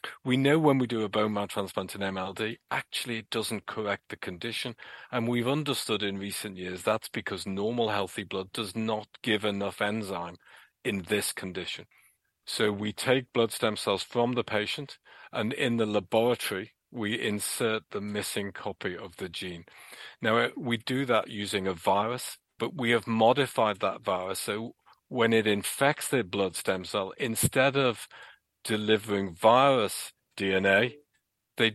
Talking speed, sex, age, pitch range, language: 160 wpm, male, 40-59, 100-125 Hz, English